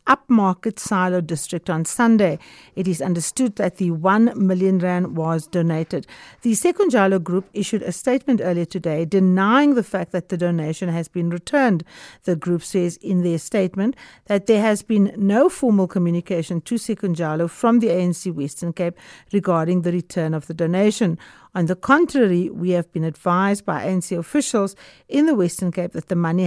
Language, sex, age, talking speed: English, female, 50-69, 170 wpm